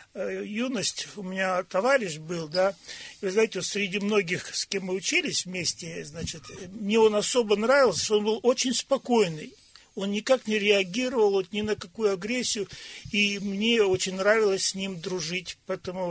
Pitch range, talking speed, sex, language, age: 180-210 Hz, 160 wpm, male, Russian, 40-59